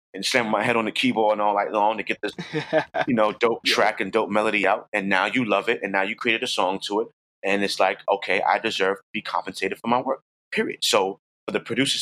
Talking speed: 260 wpm